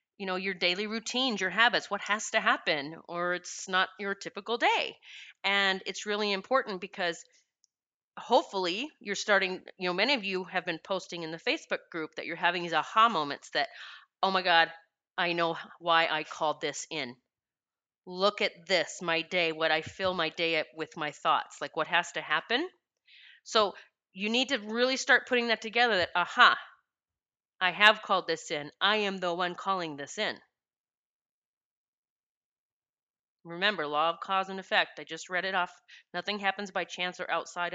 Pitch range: 165-215 Hz